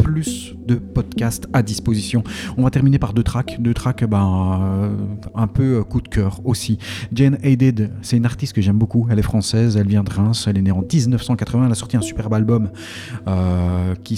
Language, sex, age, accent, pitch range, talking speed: French, male, 40-59, French, 95-115 Hz, 205 wpm